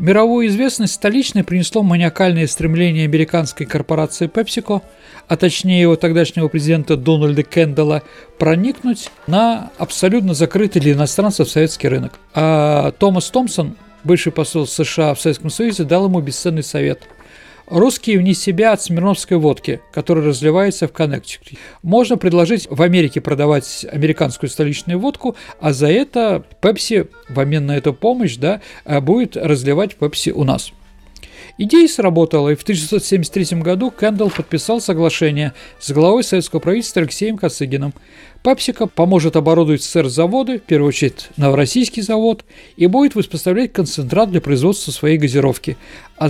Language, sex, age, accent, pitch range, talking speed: Russian, male, 40-59, native, 155-205 Hz, 135 wpm